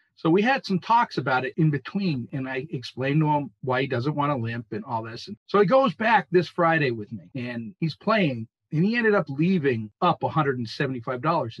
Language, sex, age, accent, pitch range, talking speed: English, male, 50-69, American, 135-195 Hz, 215 wpm